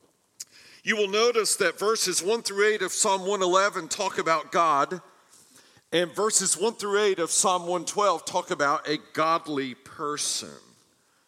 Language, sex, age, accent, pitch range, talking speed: English, male, 50-69, American, 180-230 Hz, 145 wpm